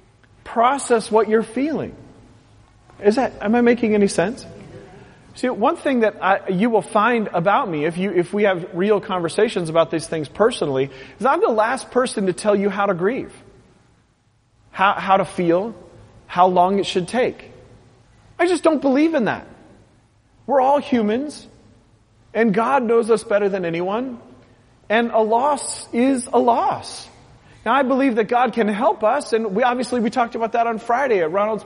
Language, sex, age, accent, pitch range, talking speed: English, male, 40-59, American, 190-260 Hz, 175 wpm